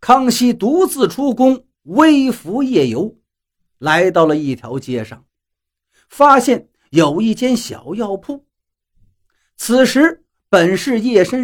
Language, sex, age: Chinese, male, 50-69